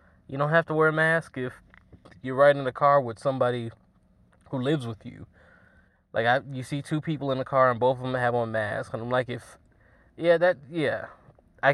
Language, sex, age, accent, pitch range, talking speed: English, male, 20-39, American, 120-155 Hz, 225 wpm